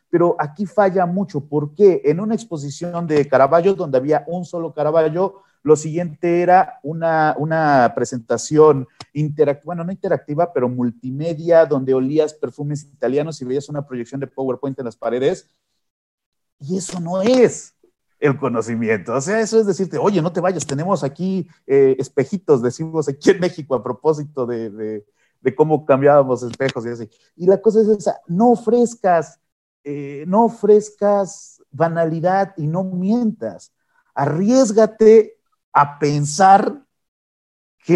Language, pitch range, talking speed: Spanish, 150-205 Hz, 145 wpm